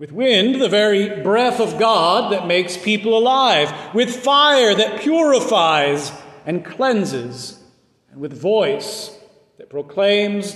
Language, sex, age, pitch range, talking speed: English, male, 40-59, 180-245 Hz, 125 wpm